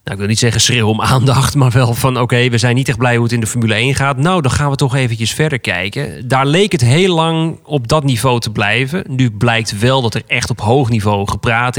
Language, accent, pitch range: Dutch, Dutch, 115-145 Hz